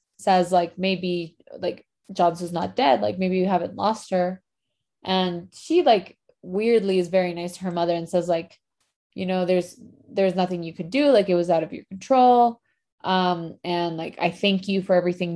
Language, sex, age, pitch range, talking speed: English, female, 20-39, 175-220 Hz, 195 wpm